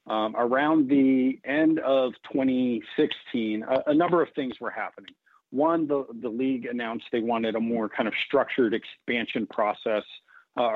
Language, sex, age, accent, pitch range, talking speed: English, male, 50-69, American, 110-130 Hz, 155 wpm